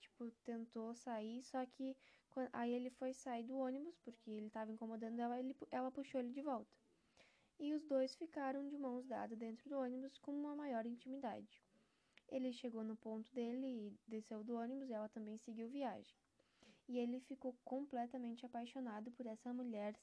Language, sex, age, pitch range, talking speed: Portuguese, female, 10-29, 220-255 Hz, 170 wpm